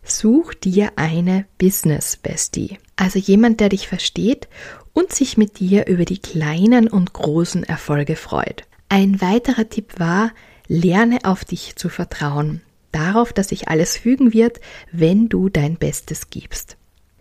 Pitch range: 165-225 Hz